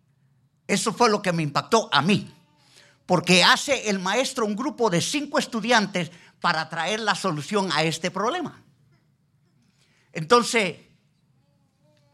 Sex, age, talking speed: male, 50-69, 125 wpm